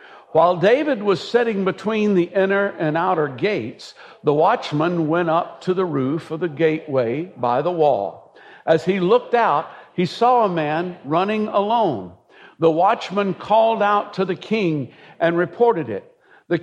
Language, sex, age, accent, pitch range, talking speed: English, male, 60-79, American, 165-215 Hz, 160 wpm